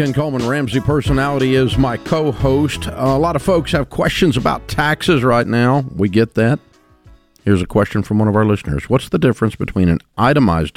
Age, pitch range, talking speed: 50-69, 90-115 Hz, 190 wpm